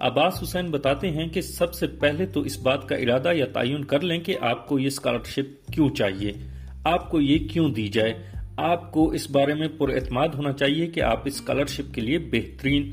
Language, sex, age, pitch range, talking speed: Urdu, male, 40-59, 120-155 Hz, 210 wpm